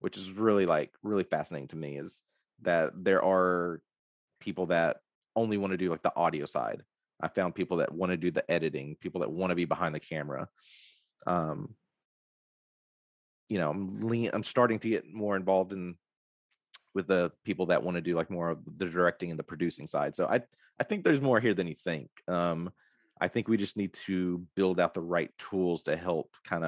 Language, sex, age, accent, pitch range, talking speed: English, male, 30-49, American, 85-100 Hz, 205 wpm